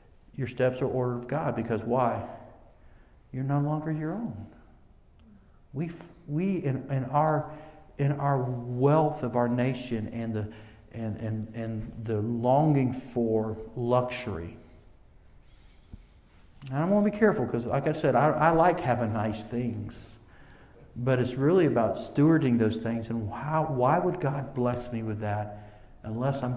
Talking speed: 150 wpm